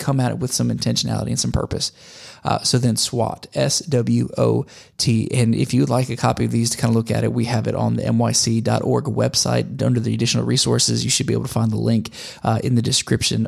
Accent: American